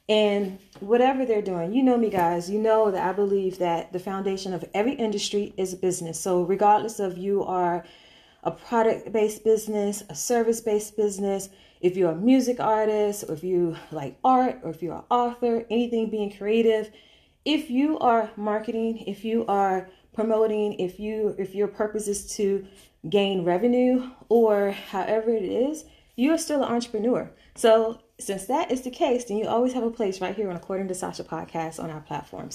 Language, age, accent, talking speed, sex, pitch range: English, 20-39, American, 185 wpm, female, 185-230 Hz